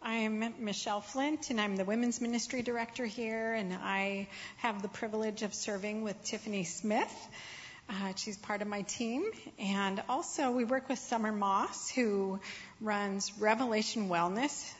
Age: 40-59